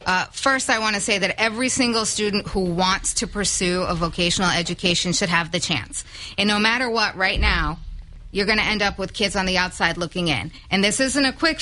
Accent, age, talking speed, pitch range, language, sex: American, 30-49, 225 wpm, 190-235 Hz, English, female